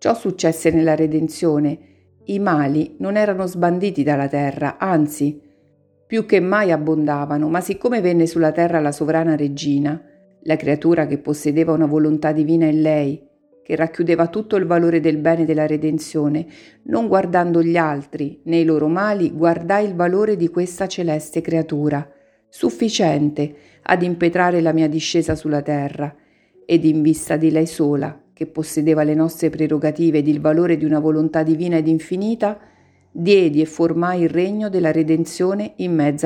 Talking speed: 155 wpm